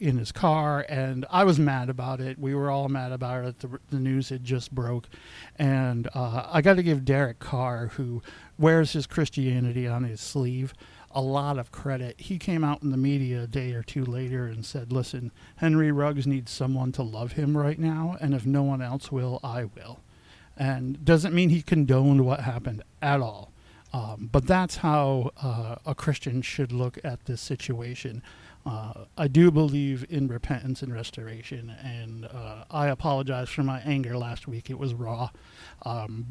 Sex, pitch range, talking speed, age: male, 125-145 Hz, 185 wpm, 50-69